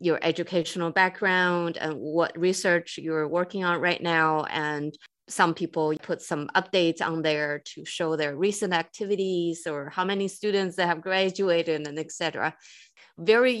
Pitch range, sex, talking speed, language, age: 160-200 Hz, female, 155 wpm, English, 30-49